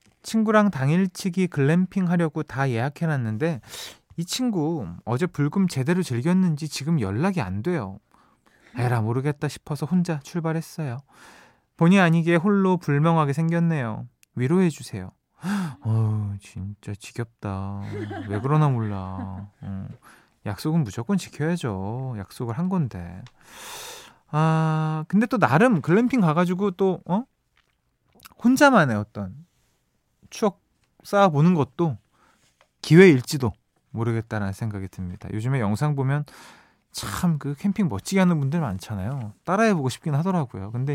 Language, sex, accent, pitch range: Korean, male, native, 115-175 Hz